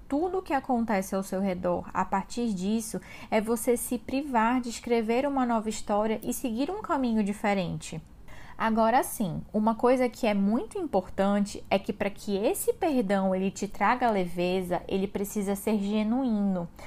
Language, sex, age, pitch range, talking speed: Portuguese, female, 20-39, 195-245 Hz, 165 wpm